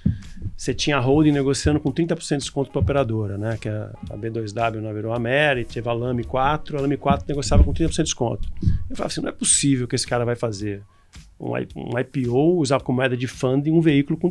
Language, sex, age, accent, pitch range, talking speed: Portuguese, male, 40-59, Brazilian, 115-175 Hz, 220 wpm